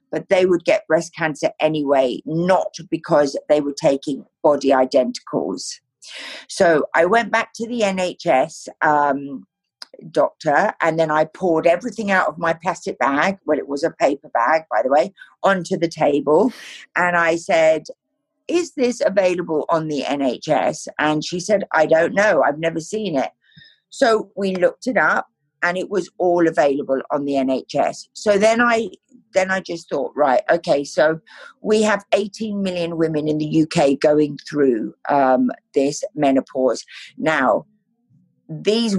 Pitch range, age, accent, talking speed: 155-205 Hz, 50-69, British, 155 wpm